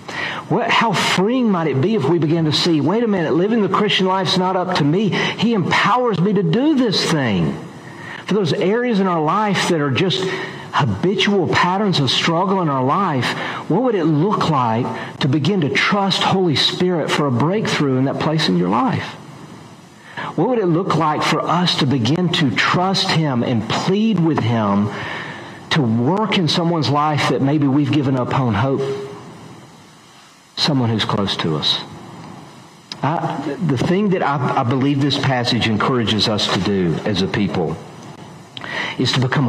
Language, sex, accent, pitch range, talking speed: English, male, American, 130-180 Hz, 180 wpm